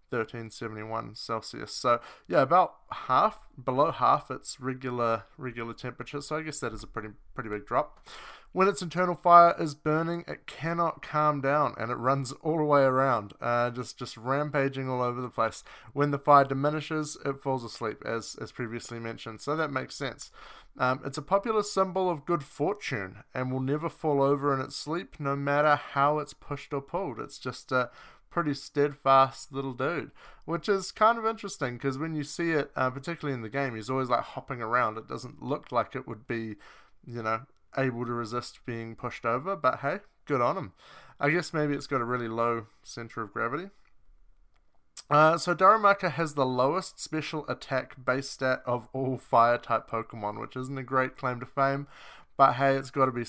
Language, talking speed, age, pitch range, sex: English, 195 wpm, 20-39, 120-150 Hz, male